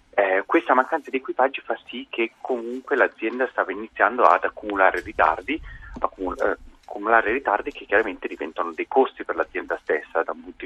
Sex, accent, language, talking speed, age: male, native, Italian, 175 wpm, 30-49